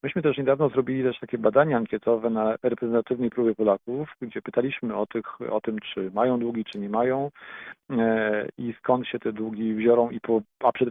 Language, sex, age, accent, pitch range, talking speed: Polish, male, 40-59, native, 110-130 Hz, 175 wpm